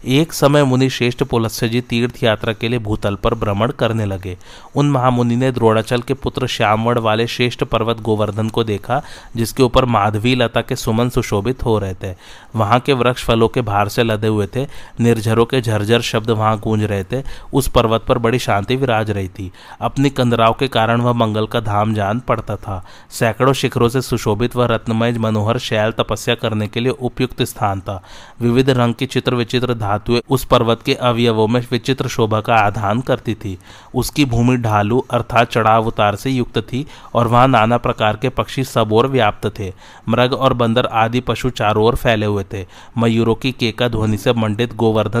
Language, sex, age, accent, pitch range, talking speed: Hindi, male, 30-49, native, 110-125 Hz, 120 wpm